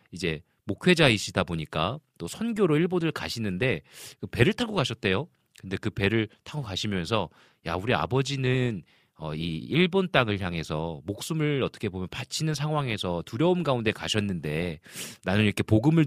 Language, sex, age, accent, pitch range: Korean, male, 40-59, native, 95-145 Hz